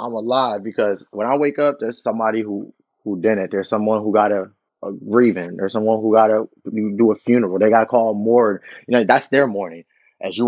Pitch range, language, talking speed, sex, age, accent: 110-135 Hz, English, 220 wpm, male, 20-39, American